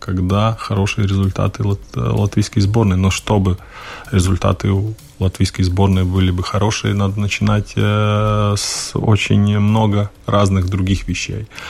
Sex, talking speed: male, 125 wpm